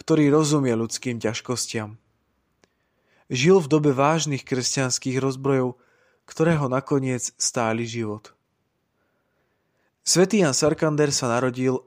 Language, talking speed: Slovak, 95 wpm